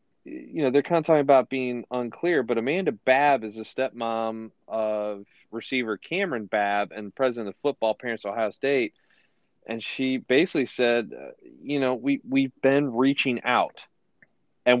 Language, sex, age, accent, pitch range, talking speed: English, male, 30-49, American, 115-140 Hz, 155 wpm